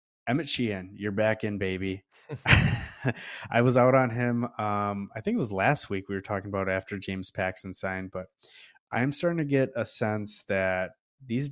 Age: 20-39